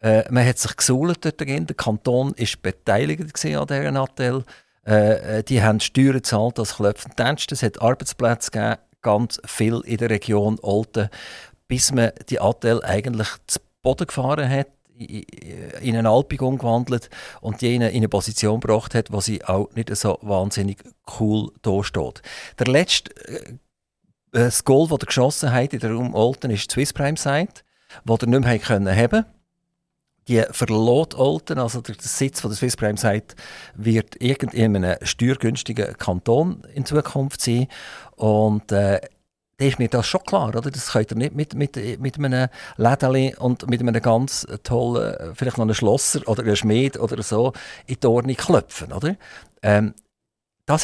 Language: German